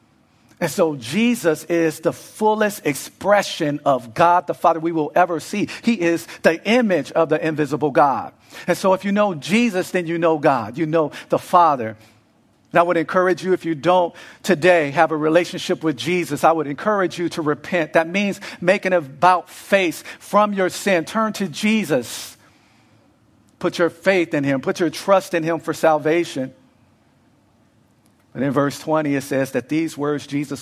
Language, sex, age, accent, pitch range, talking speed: English, male, 50-69, American, 140-180 Hz, 175 wpm